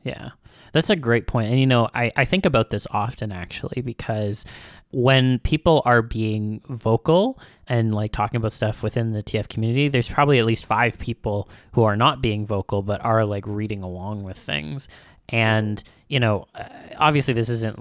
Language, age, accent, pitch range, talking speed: English, 20-39, American, 100-125 Hz, 180 wpm